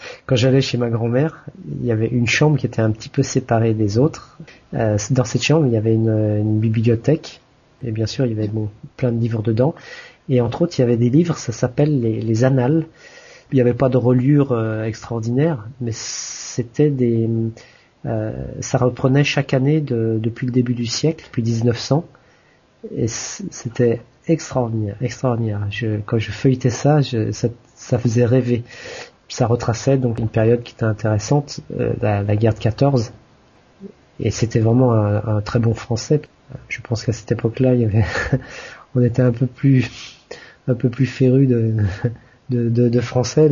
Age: 40-59